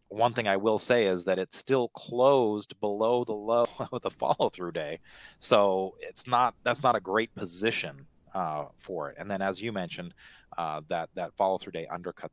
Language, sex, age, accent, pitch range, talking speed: English, male, 30-49, American, 95-115 Hz, 190 wpm